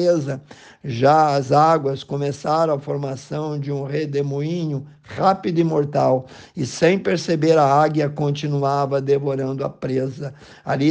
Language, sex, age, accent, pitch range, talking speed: Portuguese, male, 50-69, Brazilian, 140-160 Hz, 120 wpm